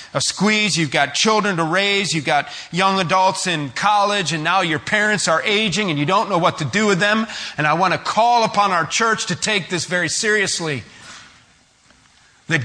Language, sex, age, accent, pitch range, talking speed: English, male, 40-59, American, 160-210 Hz, 215 wpm